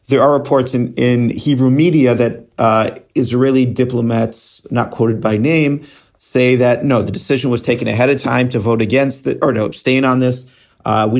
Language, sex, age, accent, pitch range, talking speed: English, male, 40-59, American, 105-125 Hz, 190 wpm